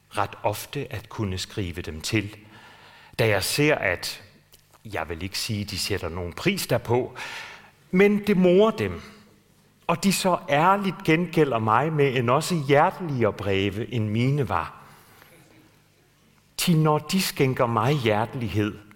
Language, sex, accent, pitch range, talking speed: Danish, male, native, 105-155 Hz, 140 wpm